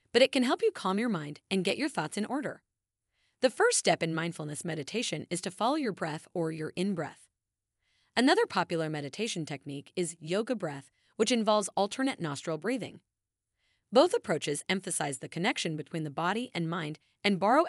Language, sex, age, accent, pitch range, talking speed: English, female, 30-49, American, 160-235 Hz, 180 wpm